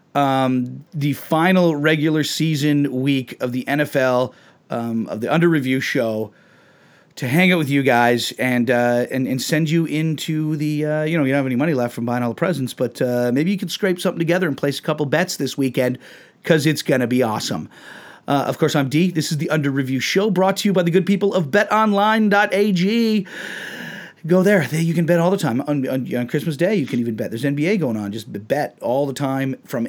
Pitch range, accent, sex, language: 125-175 Hz, American, male, English